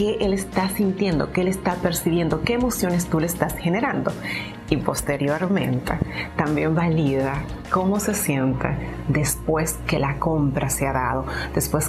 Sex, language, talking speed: female, Spanish, 145 wpm